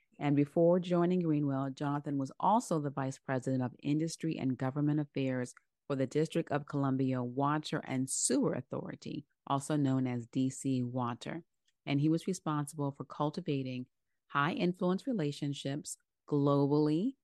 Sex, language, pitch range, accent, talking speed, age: female, English, 135-160 Hz, American, 135 wpm, 30-49